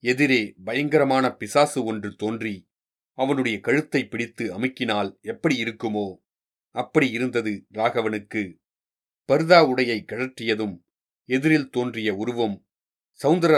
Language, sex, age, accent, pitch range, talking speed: Tamil, male, 40-59, native, 110-135 Hz, 90 wpm